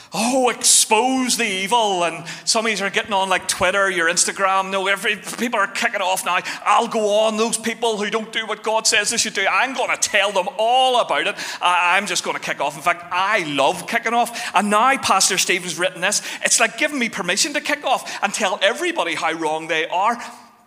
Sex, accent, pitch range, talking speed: male, British, 180-240 Hz, 225 wpm